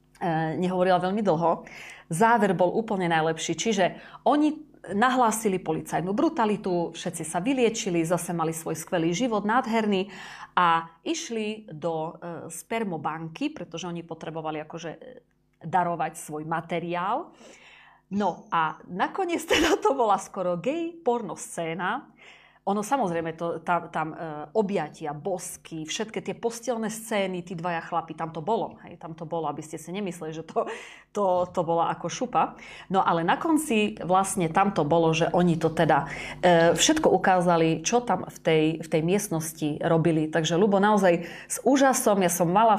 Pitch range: 165-215 Hz